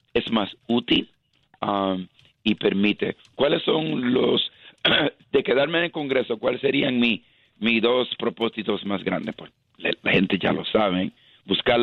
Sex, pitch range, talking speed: male, 100-120 Hz, 145 wpm